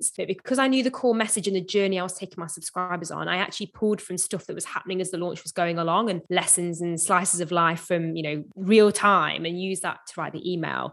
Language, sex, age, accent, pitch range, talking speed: English, female, 20-39, British, 170-205 Hz, 265 wpm